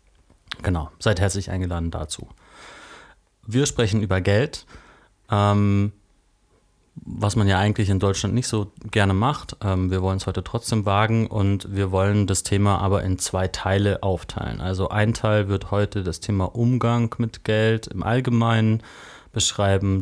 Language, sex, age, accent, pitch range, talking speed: German, male, 30-49, German, 95-105 Hz, 150 wpm